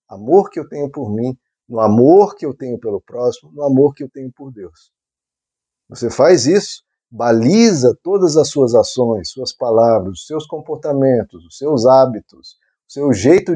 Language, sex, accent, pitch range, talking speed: Portuguese, male, Brazilian, 125-170 Hz, 165 wpm